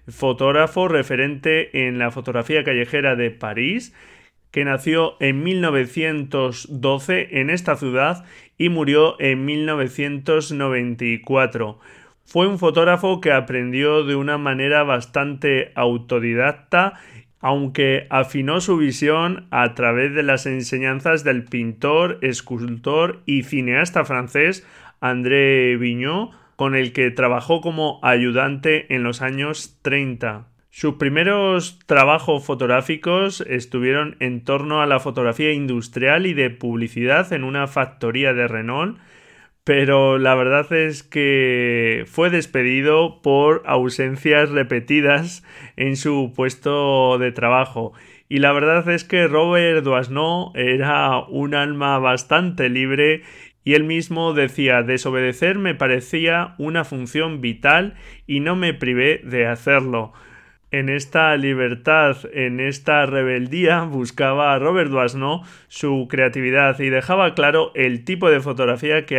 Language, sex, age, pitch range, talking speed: Spanish, male, 30-49, 125-155 Hz, 120 wpm